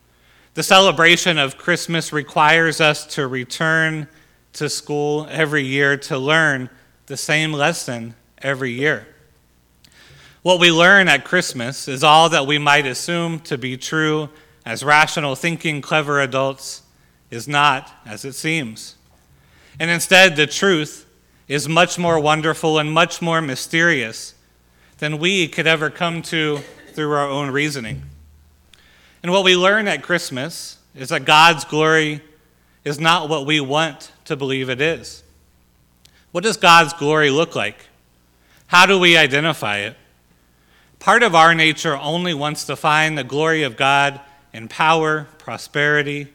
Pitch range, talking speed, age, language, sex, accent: 130-160 Hz, 140 wpm, 30-49, English, male, American